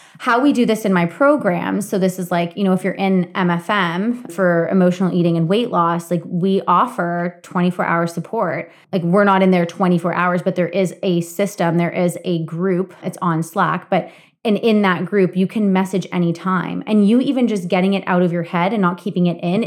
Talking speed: 215 wpm